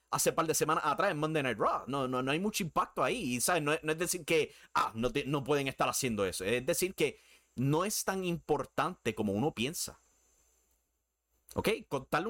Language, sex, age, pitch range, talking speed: Spanish, male, 30-49, 105-150 Hz, 190 wpm